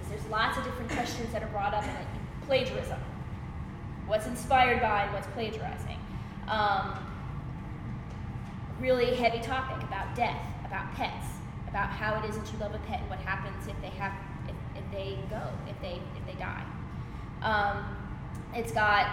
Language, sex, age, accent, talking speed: English, female, 10-29, American, 165 wpm